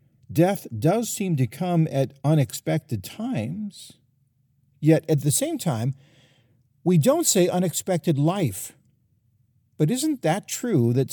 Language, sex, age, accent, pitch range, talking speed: English, male, 50-69, American, 120-160 Hz, 125 wpm